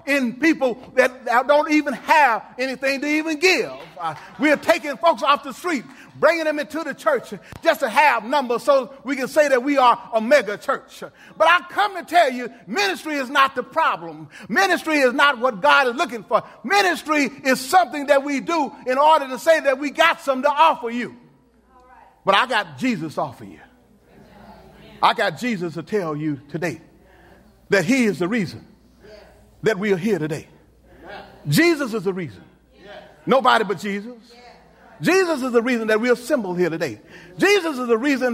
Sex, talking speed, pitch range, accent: male, 180 wpm, 225-310 Hz, American